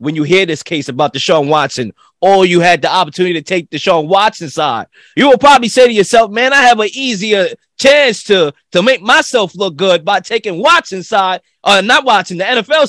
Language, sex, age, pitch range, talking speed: English, male, 20-39, 180-230 Hz, 230 wpm